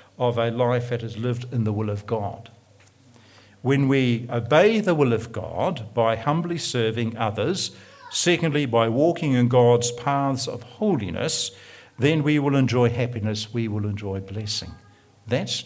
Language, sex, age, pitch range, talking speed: English, male, 60-79, 115-150 Hz, 155 wpm